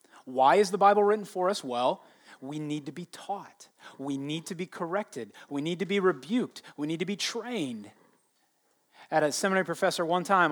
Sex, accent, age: male, American, 30-49